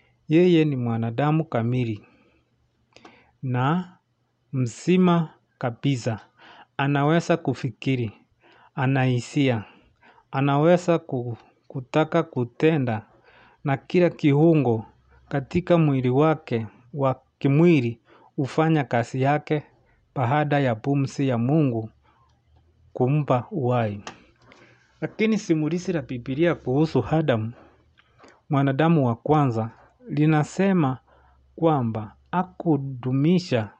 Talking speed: 75 wpm